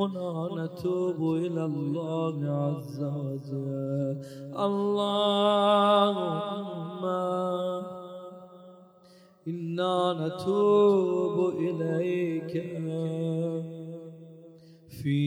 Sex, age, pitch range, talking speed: male, 30-49, 160-180 Hz, 45 wpm